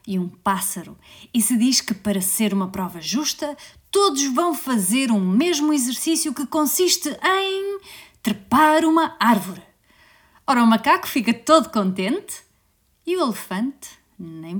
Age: 30-49